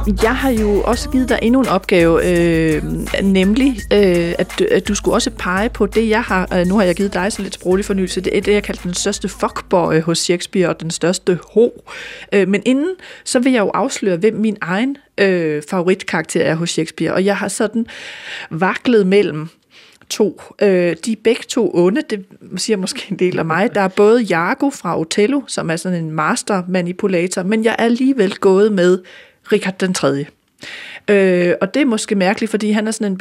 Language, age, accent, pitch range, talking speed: Danish, 30-49, native, 180-220 Hz, 200 wpm